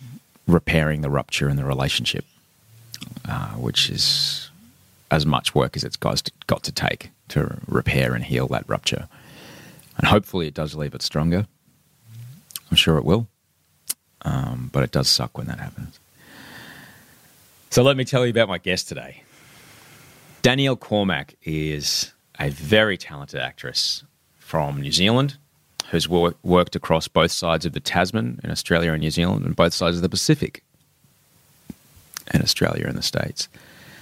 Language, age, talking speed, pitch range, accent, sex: English, 30-49, 150 wpm, 75-110 Hz, Australian, male